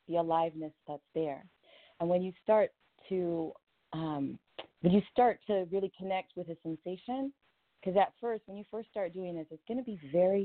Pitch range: 165-195 Hz